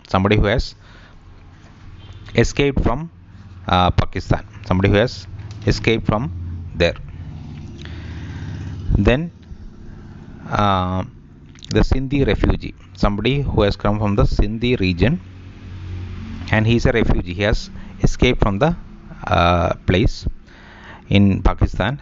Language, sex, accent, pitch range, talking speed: English, male, Indian, 95-115 Hz, 110 wpm